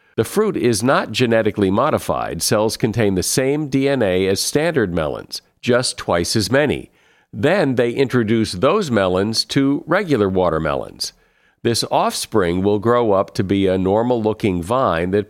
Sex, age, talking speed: male, 50-69, 150 wpm